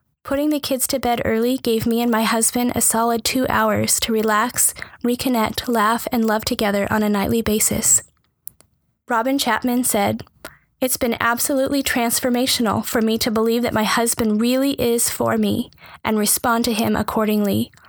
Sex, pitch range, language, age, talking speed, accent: female, 225-250 Hz, English, 10-29, 165 wpm, American